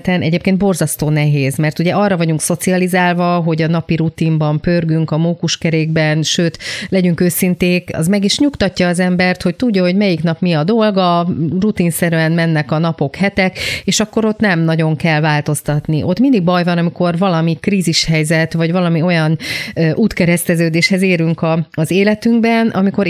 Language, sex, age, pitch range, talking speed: Hungarian, female, 30-49, 155-180 Hz, 155 wpm